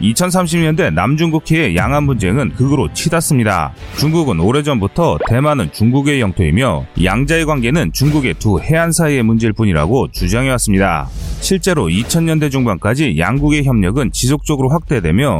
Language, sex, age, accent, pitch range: Korean, male, 30-49, native, 110-160 Hz